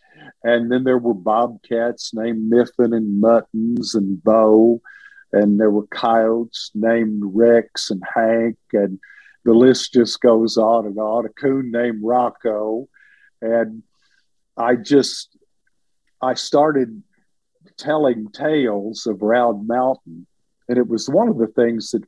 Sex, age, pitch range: male, 50-69, 110-130 Hz